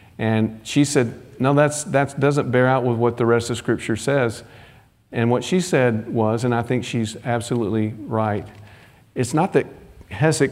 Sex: male